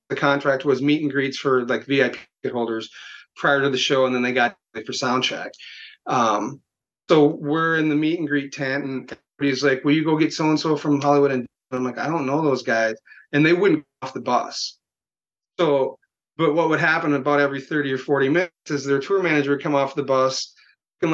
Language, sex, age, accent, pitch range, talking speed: English, male, 30-49, American, 140-165 Hz, 210 wpm